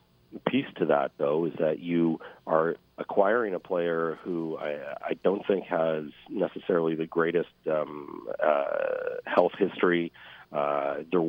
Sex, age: male, 40-59